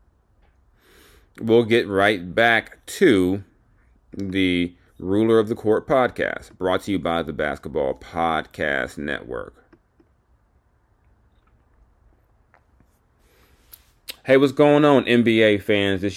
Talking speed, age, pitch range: 95 wpm, 30-49, 95-125 Hz